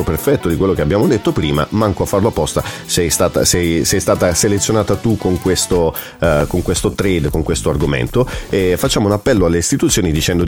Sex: male